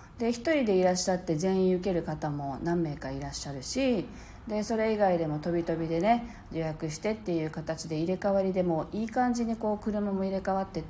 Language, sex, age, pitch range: Japanese, female, 40-59, 165-260 Hz